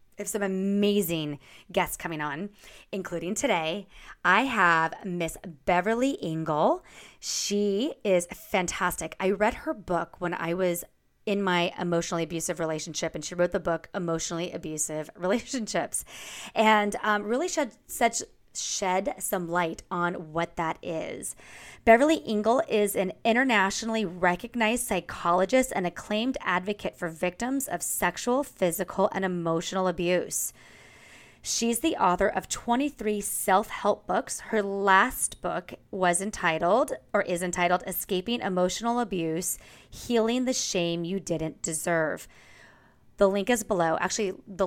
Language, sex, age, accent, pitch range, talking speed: English, female, 20-39, American, 170-210 Hz, 130 wpm